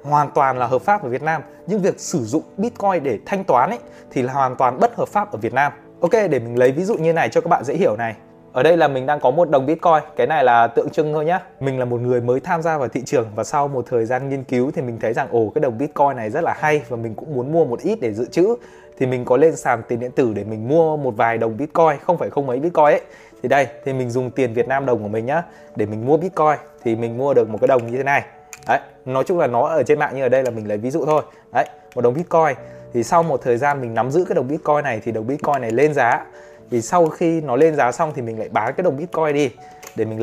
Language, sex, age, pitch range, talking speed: Vietnamese, male, 20-39, 120-155 Hz, 295 wpm